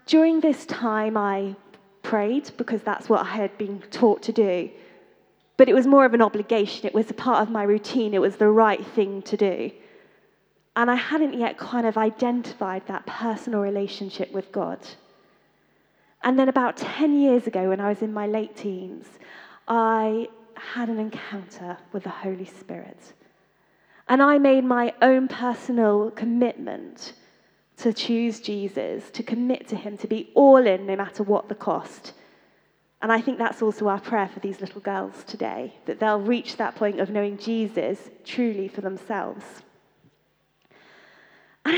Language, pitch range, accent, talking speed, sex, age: English, 205-260 Hz, British, 165 wpm, female, 20-39